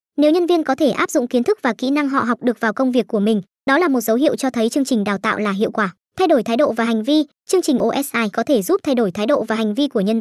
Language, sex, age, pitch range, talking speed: Vietnamese, male, 20-39, 225-290 Hz, 330 wpm